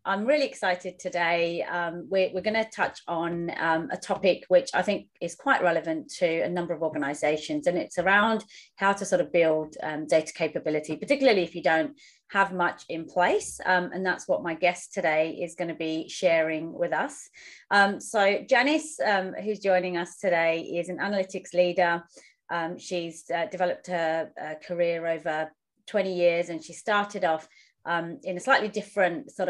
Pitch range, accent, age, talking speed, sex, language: 165-190 Hz, British, 30-49, 180 wpm, female, English